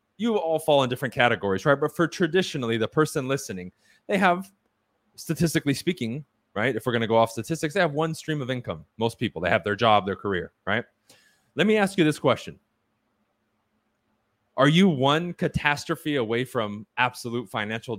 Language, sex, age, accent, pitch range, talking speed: English, male, 20-39, American, 115-160 Hz, 180 wpm